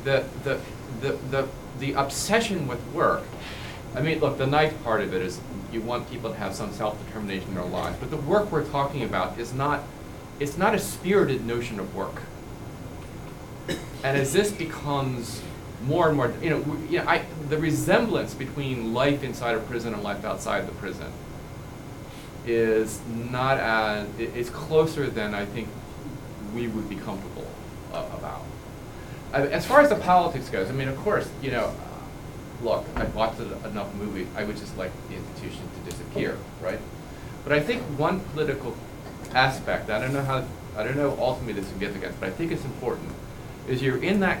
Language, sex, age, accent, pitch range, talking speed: English, male, 40-59, American, 115-145 Hz, 180 wpm